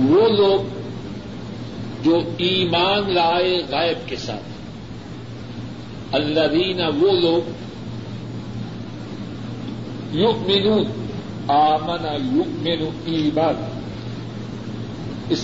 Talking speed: 65 wpm